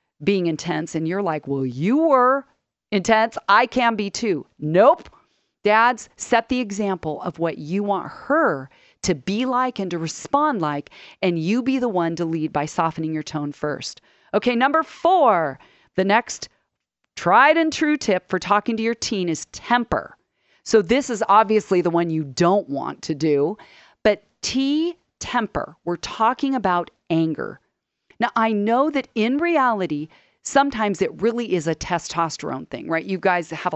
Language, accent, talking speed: English, American, 165 wpm